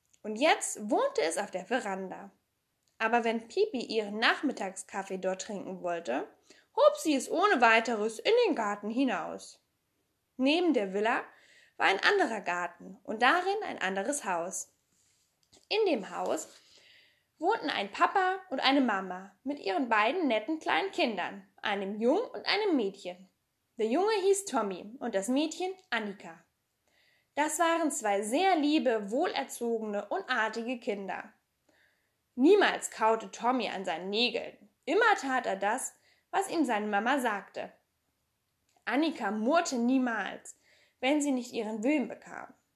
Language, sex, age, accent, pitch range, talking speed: German, female, 10-29, German, 215-315 Hz, 135 wpm